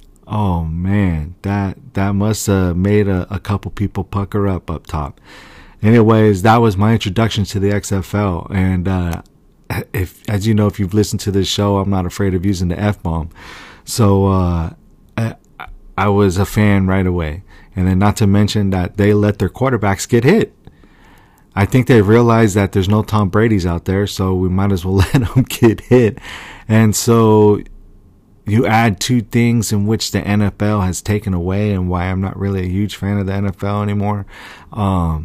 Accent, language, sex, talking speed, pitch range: American, English, male, 185 wpm, 95-110 Hz